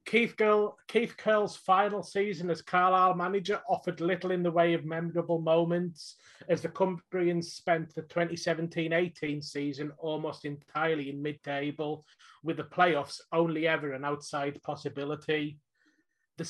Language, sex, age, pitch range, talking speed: English, male, 30-49, 150-170 Hz, 135 wpm